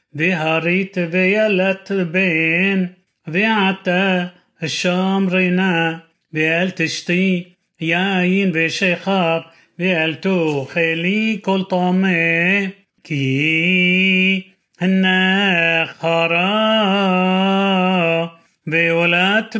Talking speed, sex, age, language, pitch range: 50 wpm, male, 30-49, Hebrew, 165-190 Hz